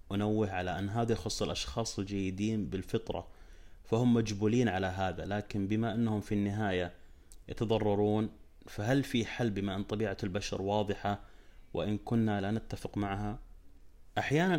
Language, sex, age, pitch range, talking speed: Arabic, male, 30-49, 95-110 Hz, 130 wpm